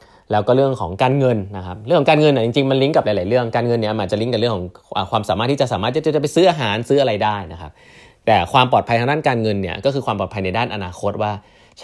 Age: 20-39